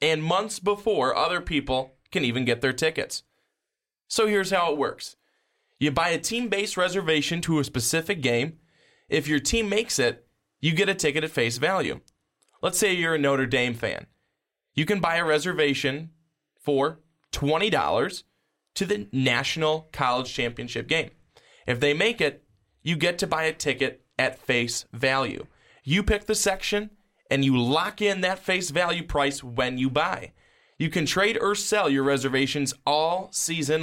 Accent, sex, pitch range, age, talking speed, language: American, male, 140-190 Hz, 20-39, 165 wpm, English